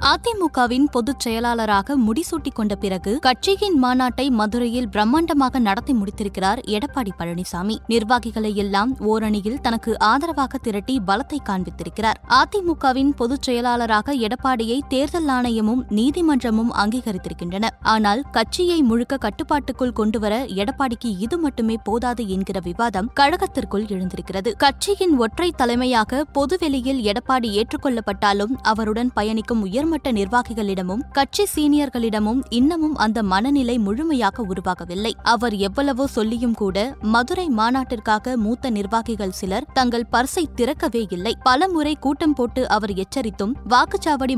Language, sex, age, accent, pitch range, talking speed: Tamil, female, 20-39, native, 215-275 Hz, 105 wpm